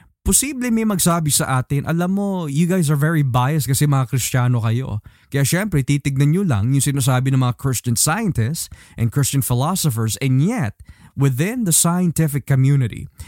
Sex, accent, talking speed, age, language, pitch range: male, native, 165 wpm, 20-39, Filipino, 115-155 Hz